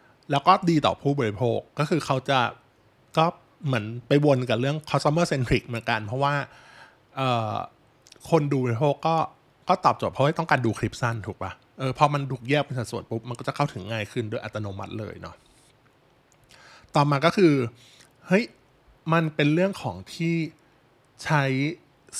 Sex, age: male, 20-39